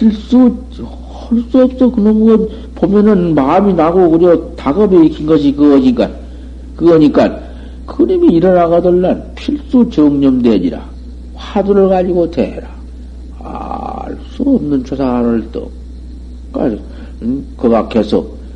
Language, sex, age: Korean, male, 60-79